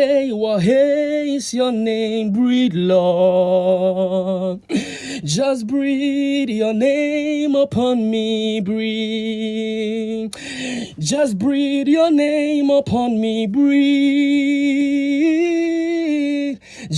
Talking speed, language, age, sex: 75 wpm, English, 20-39, male